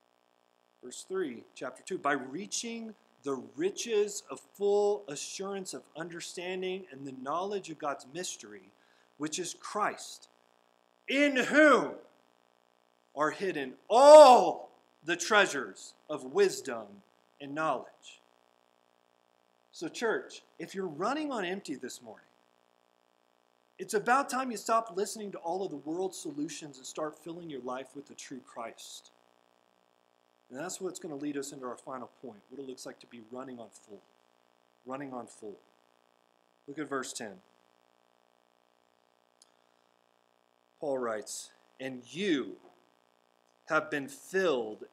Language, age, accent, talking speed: English, 40-59, American, 130 wpm